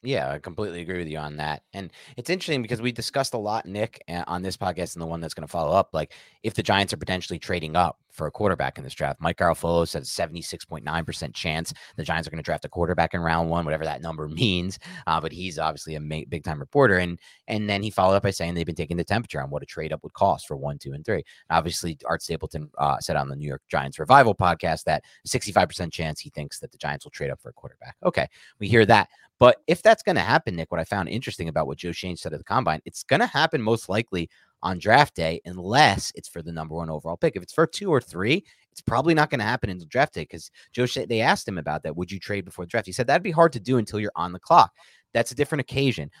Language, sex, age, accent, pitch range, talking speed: English, male, 30-49, American, 80-110 Hz, 270 wpm